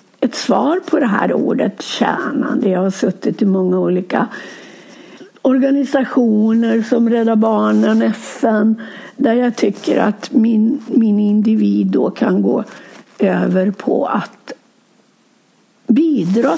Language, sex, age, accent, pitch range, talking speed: Swedish, female, 60-79, native, 210-280 Hz, 115 wpm